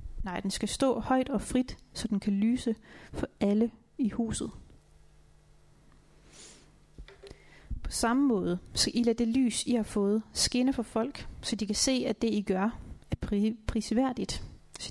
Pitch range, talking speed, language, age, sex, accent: 205-235 Hz, 165 wpm, Danish, 30-49, female, native